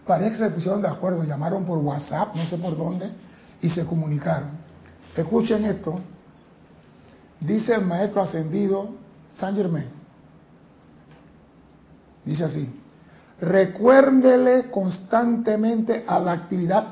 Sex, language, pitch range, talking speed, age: male, Spanish, 165-220 Hz, 115 wpm, 60-79